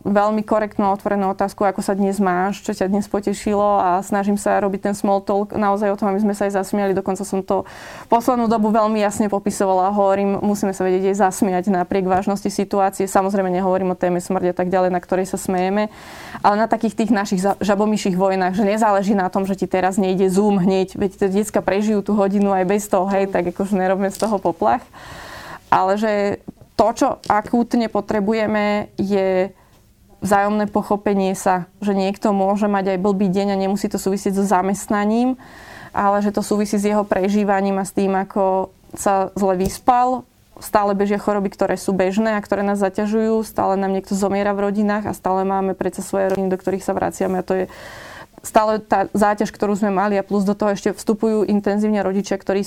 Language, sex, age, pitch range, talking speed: Slovak, female, 20-39, 190-210 Hz, 195 wpm